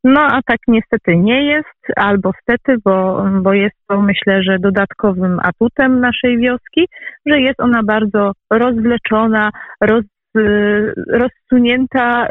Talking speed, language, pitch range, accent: 120 wpm, Polish, 185-240 Hz, native